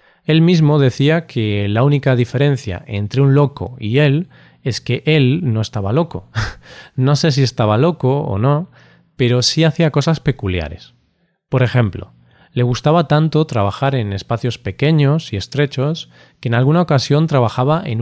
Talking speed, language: 155 wpm, Spanish